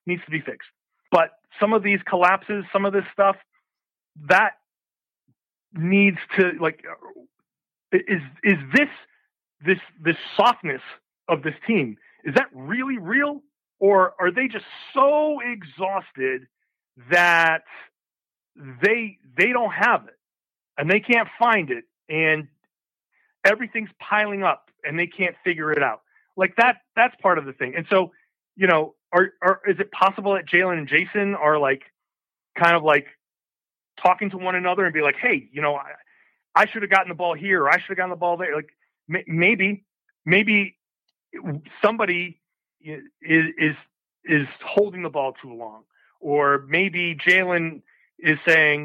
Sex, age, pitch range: male, 40-59, 155-200 Hz